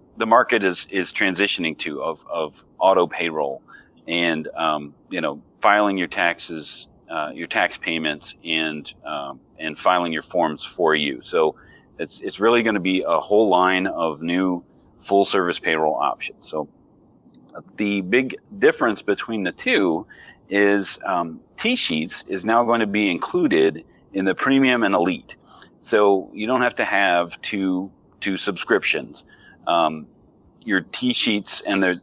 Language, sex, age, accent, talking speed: English, male, 40-59, American, 150 wpm